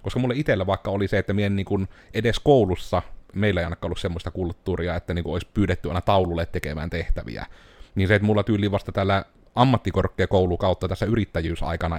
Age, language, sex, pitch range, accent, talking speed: 30-49, Finnish, male, 85-105 Hz, native, 180 wpm